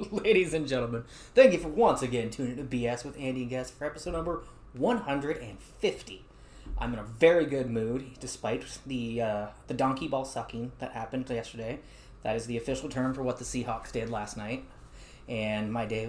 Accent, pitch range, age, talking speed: American, 120-140 Hz, 30-49, 185 wpm